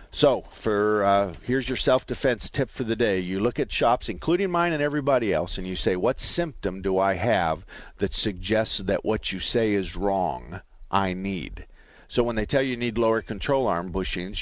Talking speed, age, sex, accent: 200 wpm, 50-69, male, American